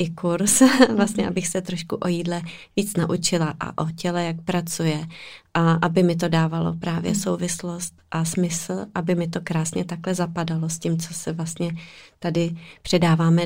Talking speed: 165 wpm